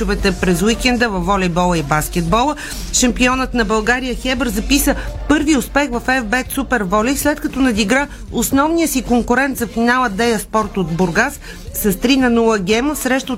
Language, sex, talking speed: Bulgarian, female, 150 wpm